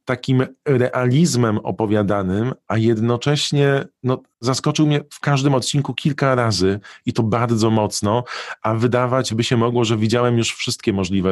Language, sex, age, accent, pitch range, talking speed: Polish, male, 40-59, native, 105-125 Hz, 145 wpm